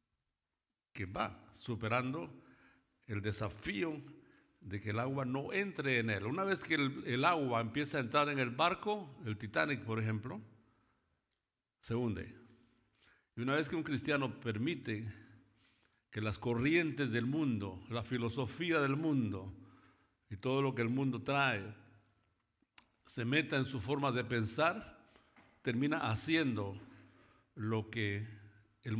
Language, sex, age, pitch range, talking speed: Spanish, male, 60-79, 105-125 Hz, 135 wpm